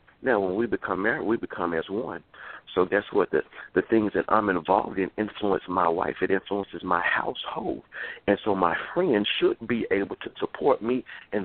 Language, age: English, 50-69